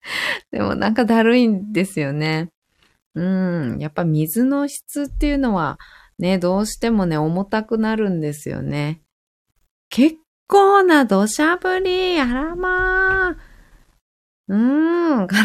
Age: 20-39